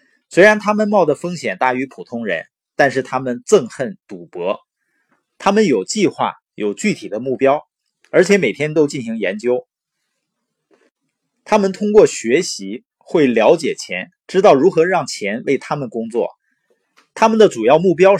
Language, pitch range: Chinese, 125-200 Hz